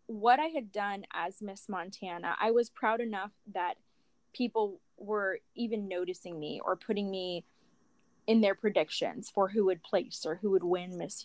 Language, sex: English, female